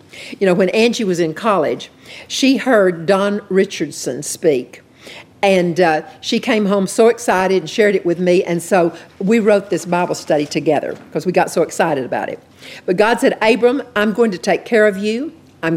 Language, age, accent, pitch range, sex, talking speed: English, 50-69, American, 170-215 Hz, female, 195 wpm